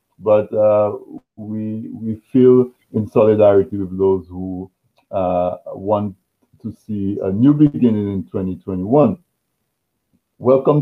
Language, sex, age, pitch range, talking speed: English, male, 50-69, 95-120 Hz, 110 wpm